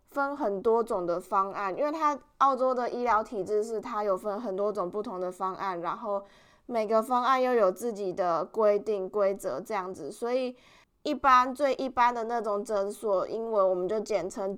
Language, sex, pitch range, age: Chinese, female, 195-245 Hz, 20-39